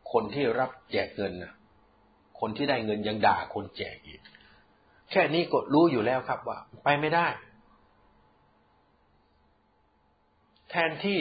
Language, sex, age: Thai, male, 60-79